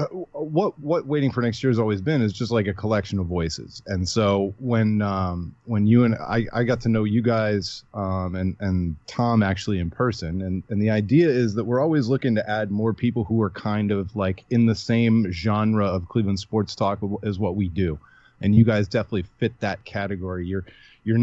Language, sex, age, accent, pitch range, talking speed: English, male, 30-49, American, 100-125 Hz, 215 wpm